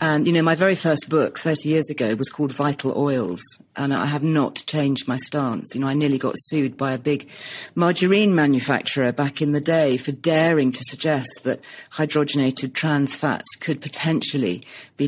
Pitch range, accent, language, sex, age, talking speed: 135-160 Hz, British, English, female, 40-59, 185 wpm